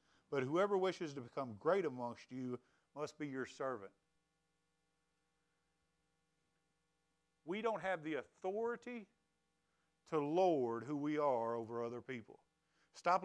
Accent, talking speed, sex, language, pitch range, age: American, 120 wpm, male, English, 145-180 Hz, 50-69